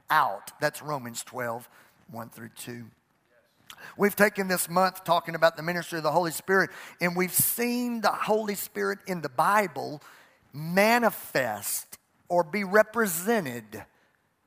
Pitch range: 155-205 Hz